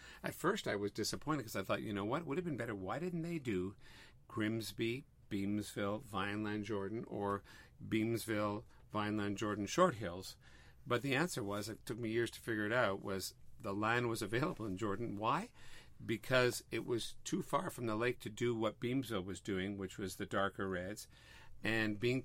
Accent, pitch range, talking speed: American, 105-125 Hz, 190 wpm